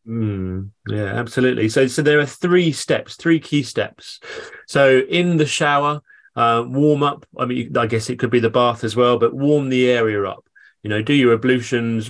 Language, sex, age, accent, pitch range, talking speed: English, male, 30-49, British, 115-140 Hz, 200 wpm